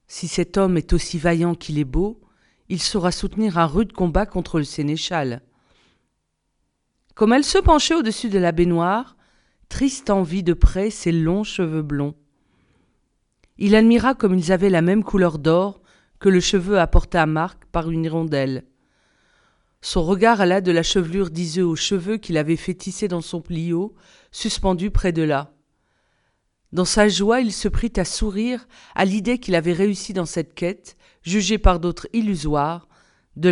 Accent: French